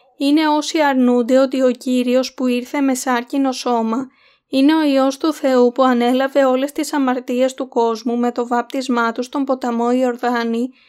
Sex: female